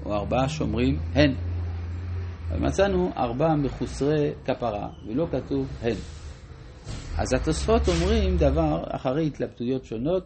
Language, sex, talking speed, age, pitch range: Hebrew, male, 105 wpm, 50-69, 95-150 Hz